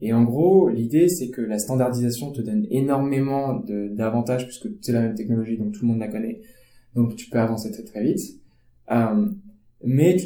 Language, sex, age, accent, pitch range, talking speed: French, male, 20-39, French, 110-135 Hz, 200 wpm